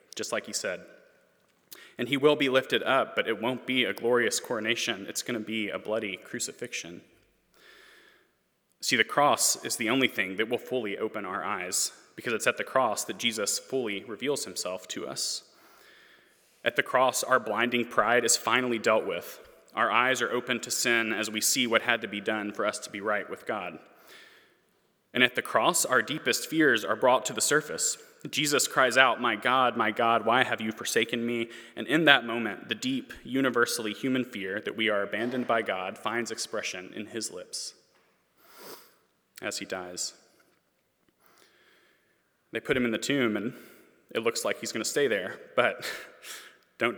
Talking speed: 185 wpm